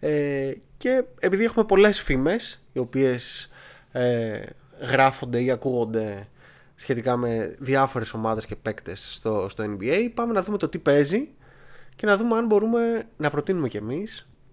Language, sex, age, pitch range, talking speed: Greek, male, 20-39, 125-170 Hz, 150 wpm